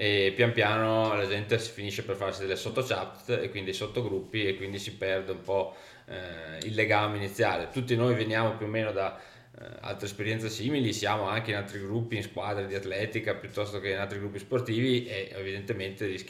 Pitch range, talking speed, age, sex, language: 100-115 Hz, 195 wpm, 20-39, male, Italian